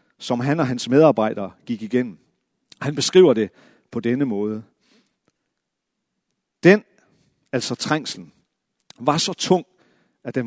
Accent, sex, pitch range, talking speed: native, male, 120-165 Hz, 120 wpm